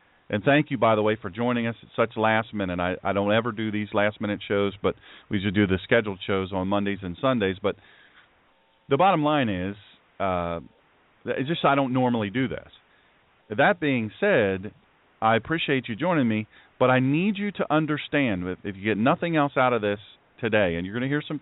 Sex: male